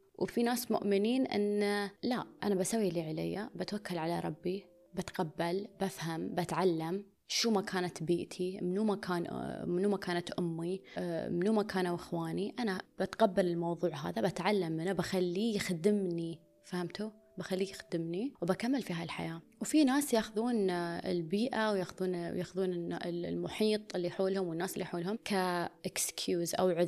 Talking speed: 120 wpm